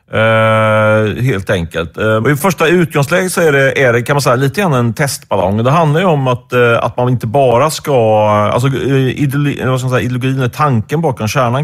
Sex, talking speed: male, 195 wpm